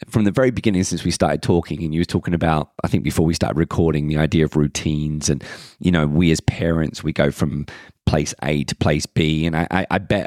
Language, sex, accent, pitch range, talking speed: English, male, British, 90-115 Hz, 240 wpm